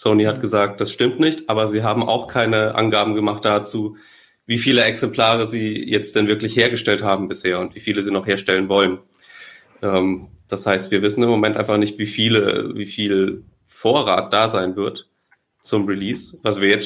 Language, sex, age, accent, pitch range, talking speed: German, male, 30-49, German, 100-120 Hz, 185 wpm